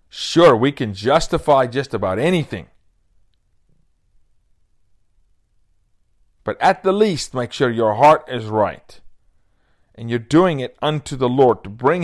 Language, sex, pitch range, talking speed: English, male, 90-135 Hz, 130 wpm